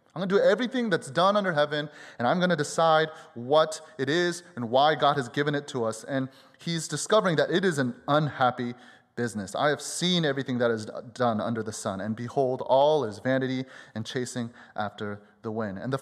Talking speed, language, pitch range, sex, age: 210 wpm, English, 125-160 Hz, male, 30-49